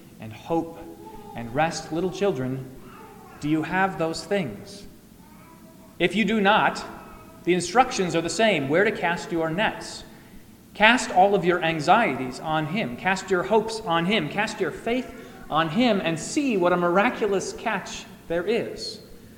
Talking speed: 155 wpm